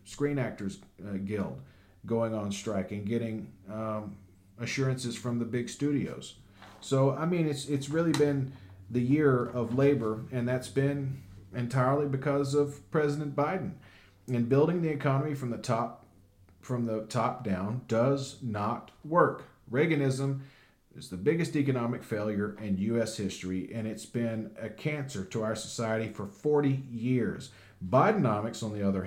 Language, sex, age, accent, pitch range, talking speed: English, male, 40-59, American, 105-135 Hz, 145 wpm